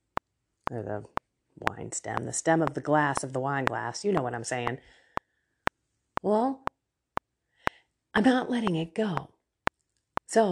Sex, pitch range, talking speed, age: female, 150-205 Hz, 145 wpm, 40-59